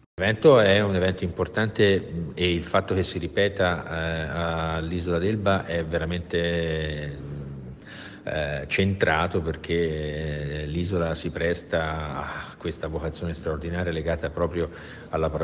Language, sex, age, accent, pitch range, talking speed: Italian, male, 50-69, native, 80-95 Hz, 115 wpm